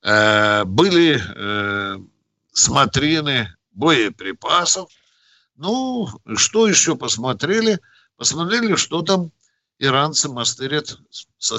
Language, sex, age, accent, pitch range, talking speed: Russian, male, 60-79, native, 115-165 Hz, 70 wpm